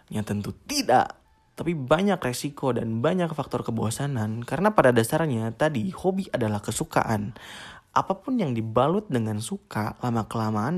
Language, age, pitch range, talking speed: Indonesian, 20-39, 110-140 Hz, 130 wpm